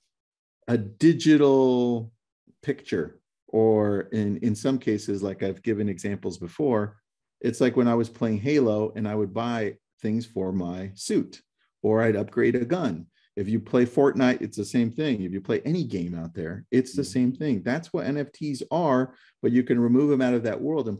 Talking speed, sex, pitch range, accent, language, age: 190 wpm, male, 100-125 Hz, American, English, 40-59